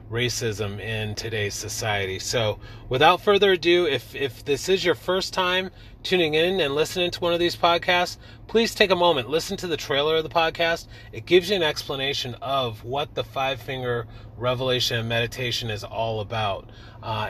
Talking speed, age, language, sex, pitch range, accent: 175 wpm, 30-49, English, male, 110-150 Hz, American